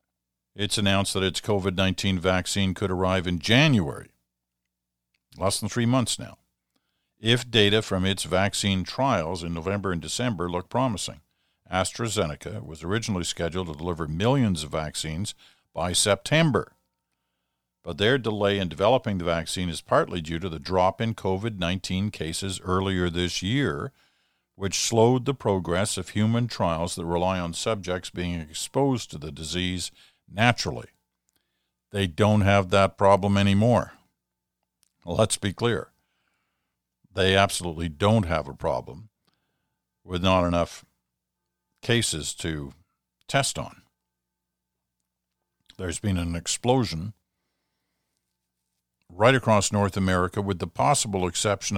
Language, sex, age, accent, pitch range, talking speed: English, male, 50-69, American, 80-105 Hz, 125 wpm